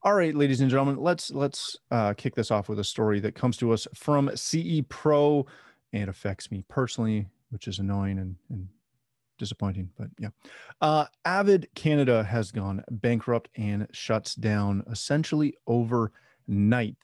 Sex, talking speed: male, 155 wpm